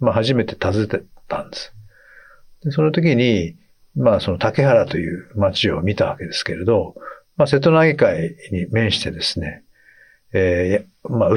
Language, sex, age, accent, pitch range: Japanese, male, 60-79, native, 90-140 Hz